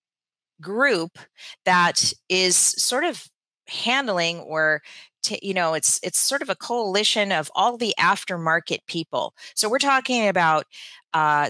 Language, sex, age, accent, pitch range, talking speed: English, female, 30-49, American, 160-210 Hz, 135 wpm